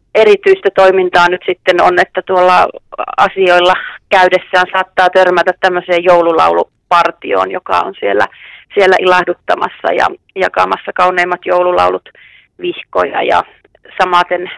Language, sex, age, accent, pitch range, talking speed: Finnish, female, 30-49, native, 175-195 Hz, 105 wpm